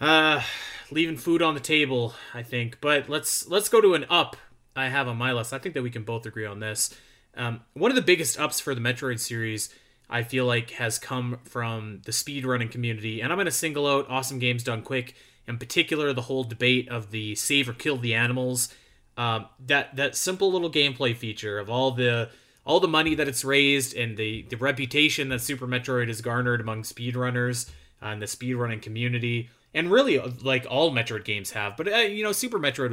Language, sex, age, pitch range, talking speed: English, male, 20-39, 120-140 Hz, 210 wpm